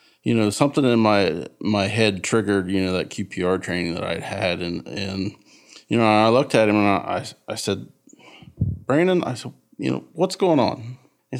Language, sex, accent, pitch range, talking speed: English, male, American, 95-115 Hz, 200 wpm